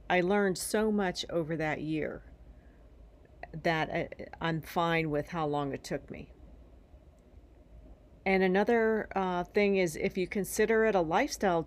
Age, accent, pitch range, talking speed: 40-59, American, 140-195 Hz, 140 wpm